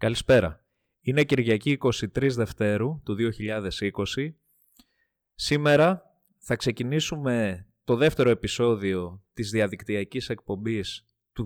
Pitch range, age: 100-135 Hz, 20-39